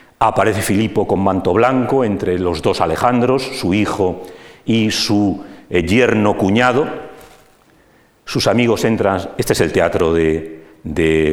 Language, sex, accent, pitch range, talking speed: Spanish, male, Spanish, 85-115 Hz, 130 wpm